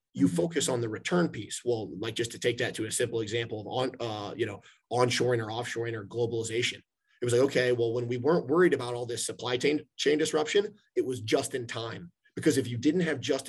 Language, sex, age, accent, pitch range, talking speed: English, male, 30-49, American, 115-140 Hz, 235 wpm